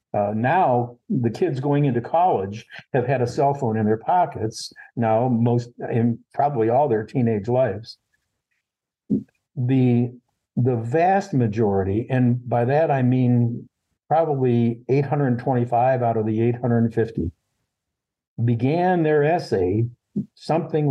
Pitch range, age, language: 115-145 Hz, 60-79, English